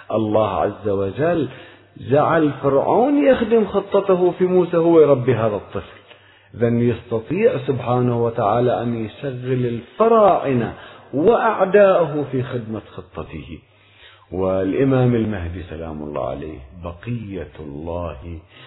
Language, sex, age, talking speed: Arabic, male, 50-69, 100 wpm